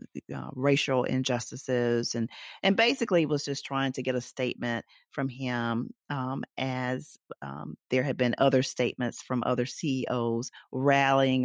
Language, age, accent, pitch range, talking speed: English, 40-59, American, 120-140 Hz, 140 wpm